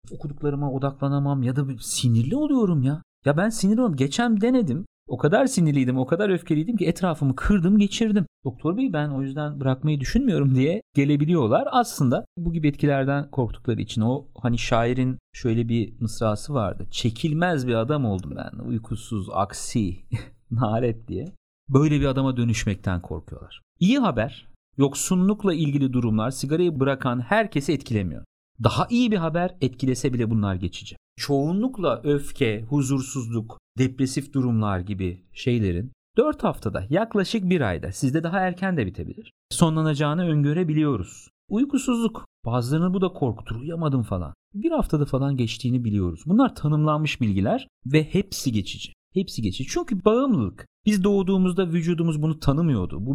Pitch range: 115-175 Hz